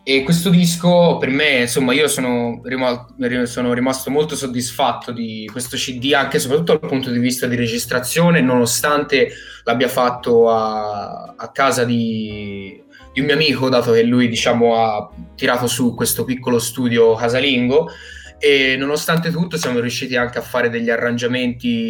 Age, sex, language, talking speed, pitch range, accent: 20-39, male, Italian, 155 wpm, 115-145 Hz, native